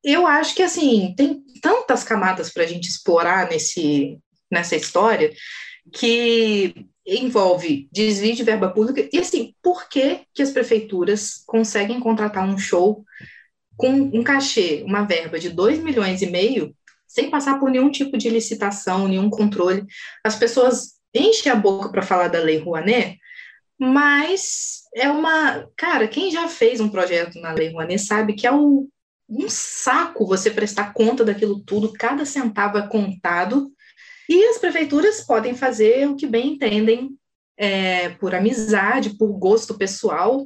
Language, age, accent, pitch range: Portuguese, 20-39, Brazilian, 195-280 Hz